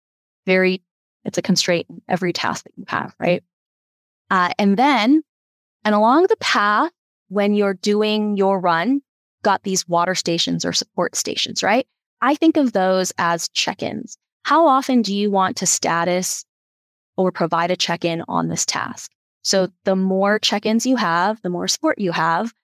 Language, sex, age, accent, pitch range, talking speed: English, female, 20-39, American, 175-215 Hz, 165 wpm